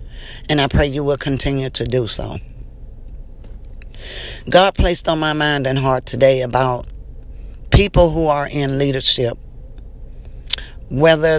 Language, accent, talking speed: English, American, 125 wpm